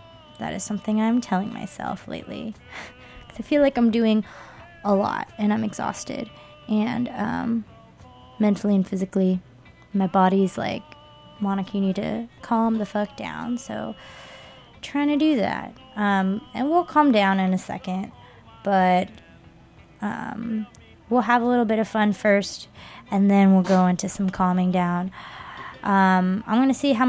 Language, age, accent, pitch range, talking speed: English, 20-39, American, 190-230 Hz, 155 wpm